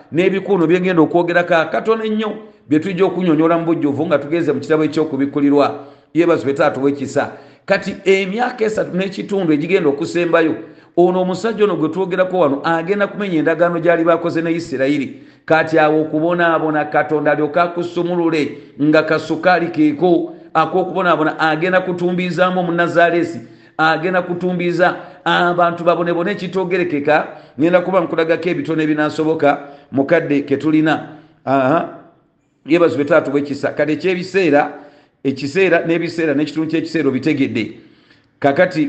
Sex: male